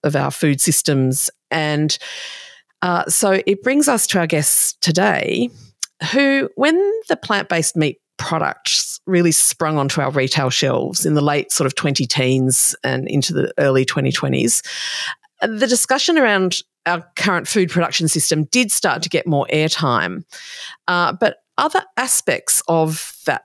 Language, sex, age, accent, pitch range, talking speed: English, female, 40-59, Australian, 150-200 Hz, 145 wpm